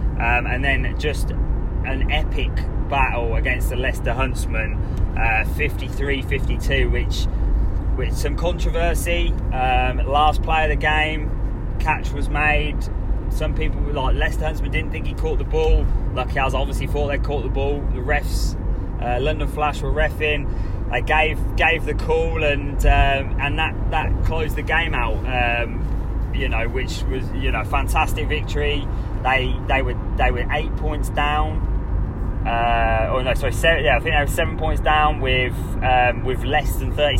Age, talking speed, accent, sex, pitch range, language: 20-39, 170 wpm, British, male, 90-125 Hz, English